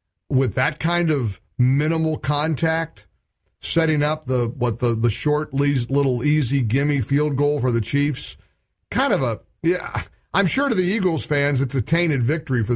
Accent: American